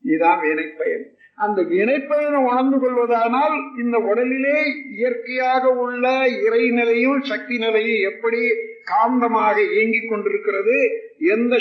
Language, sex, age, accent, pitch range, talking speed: Tamil, male, 50-69, native, 205-290 Hz, 95 wpm